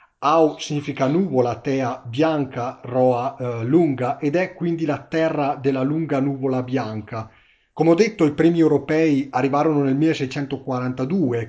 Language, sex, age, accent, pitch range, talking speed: Italian, male, 40-59, native, 130-160 Hz, 130 wpm